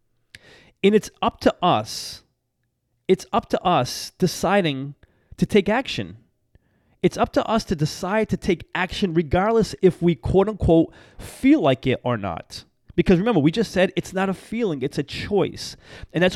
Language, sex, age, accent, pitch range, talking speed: English, male, 30-49, American, 145-195 Hz, 170 wpm